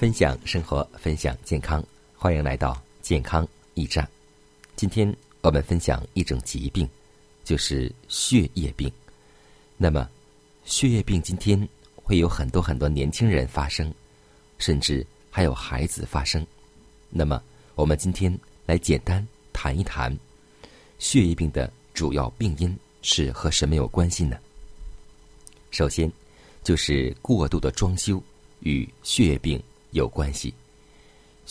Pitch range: 70-90 Hz